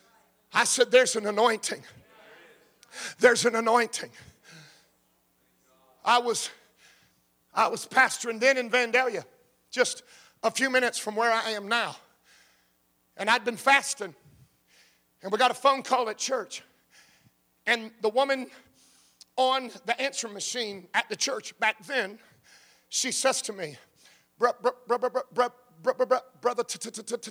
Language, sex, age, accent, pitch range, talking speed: English, male, 50-69, American, 215-250 Hz, 120 wpm